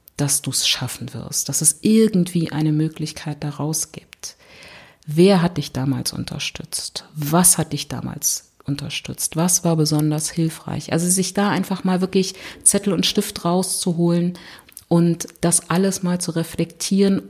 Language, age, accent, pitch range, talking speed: German, 50-69, German, 155-190 Hz, 145 wpm